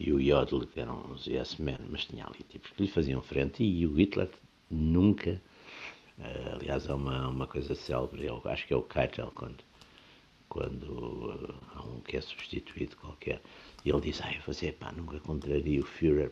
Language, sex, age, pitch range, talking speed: Portuguese, male, 60-79, 70-90 Hz, 200 wpm